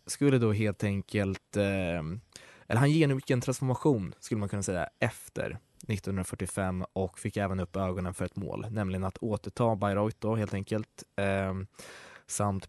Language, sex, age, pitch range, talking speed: Swedish, male, 20-39, 95-120 Hz, 155 wpm